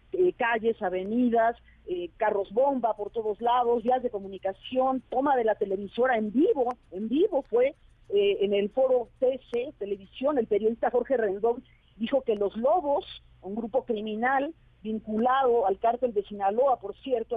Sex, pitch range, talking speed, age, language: female, 220-300 Hz, 155 wpm, 40-59, Spanish